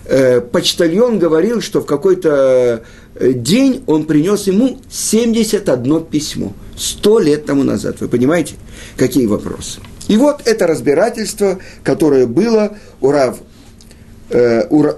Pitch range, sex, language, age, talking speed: 120-200 Hz, male, Russian, 50-69, 110 wpm